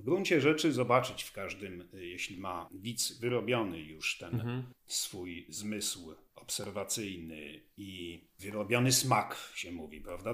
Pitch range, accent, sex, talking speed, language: 110-145 Hz, native, male, 120 wpm, Polish